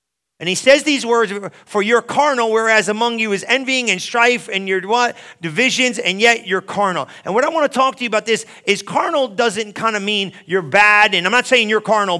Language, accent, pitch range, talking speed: English, American, 185-235 Hz, 230 wpm